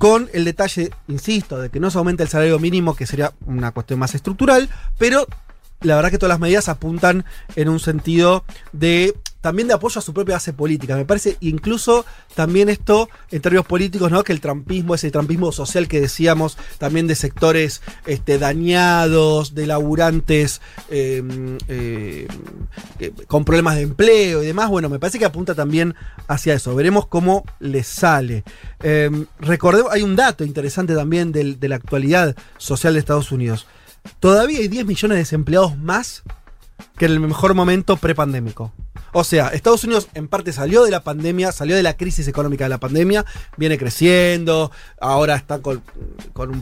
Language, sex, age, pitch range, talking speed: Spanish, male, 30-49, 145-185 Hz, 175 wpm